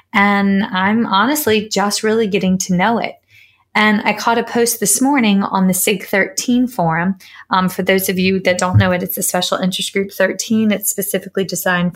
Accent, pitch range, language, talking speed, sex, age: American, 180-220 Hz, English, 190 wpm, female, 20-39